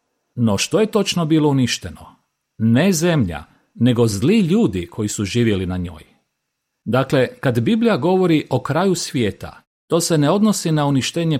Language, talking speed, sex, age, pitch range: Croatian, 155 wpm, male, 40-59, 110-160 Hz